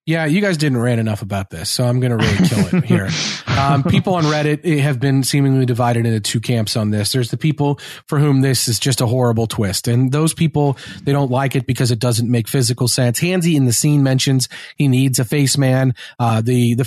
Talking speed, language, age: 235 wpm, English, 30-49